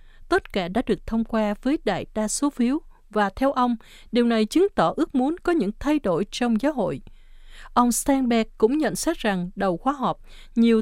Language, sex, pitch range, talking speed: Vietnamese, female, 205-265 Hz, 205 wpm